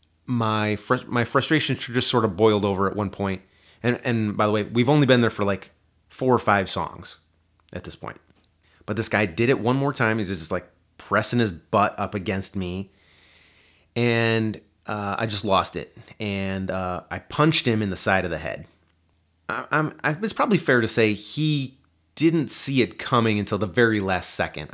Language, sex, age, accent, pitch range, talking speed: English, male, 30-49, American, 90-115 Hz, 200 wpm